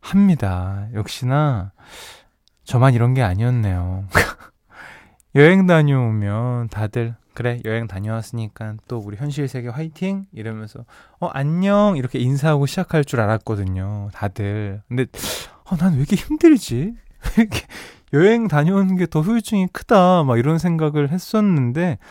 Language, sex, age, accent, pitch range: Korean, male, 20-39, native, 110-160 Hz